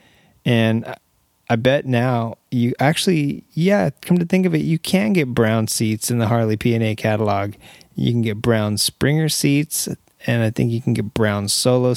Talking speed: 180 wpm